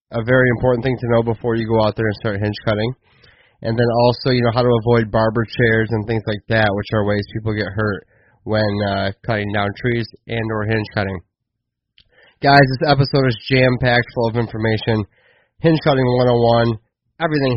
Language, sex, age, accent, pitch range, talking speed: English, male, 20-39, American, 110-130 Hz, 190 wpm